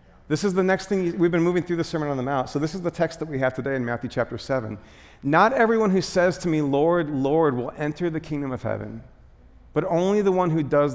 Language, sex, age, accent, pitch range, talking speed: English, male, 40-59, American, 125-180 Hz, 260 wpm